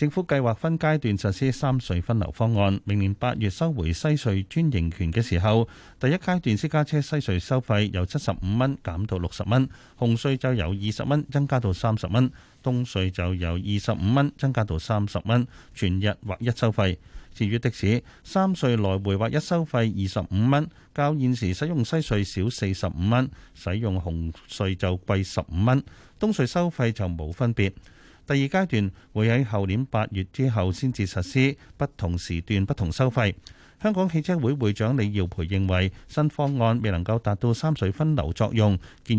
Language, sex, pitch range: Chinese, male, 95-135 Hz